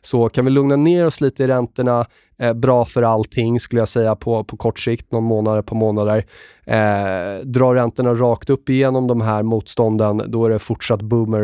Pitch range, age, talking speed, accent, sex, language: 110-125 Hz, 30-49, 200 wpm, native, male, Swedish